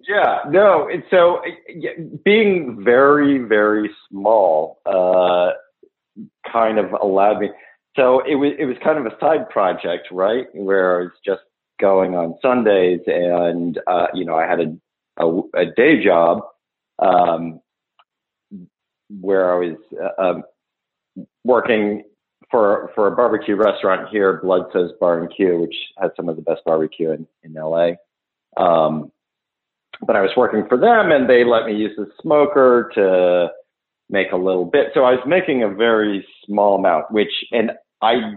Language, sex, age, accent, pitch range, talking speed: English, male, 40-59, American, 90-115 Hz, 160 wpm